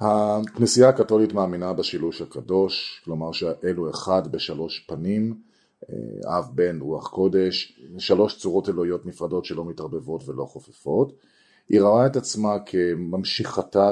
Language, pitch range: Hebrew, 80-115 Hz